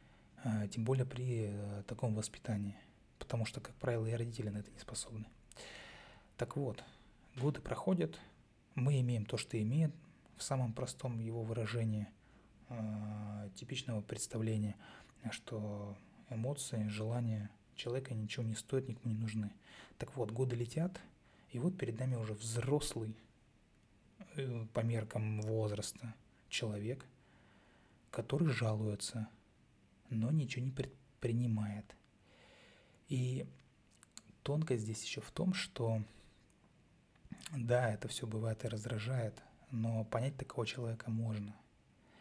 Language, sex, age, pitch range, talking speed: Russian, male, 20-39, 110-130 Hz, 110 wpm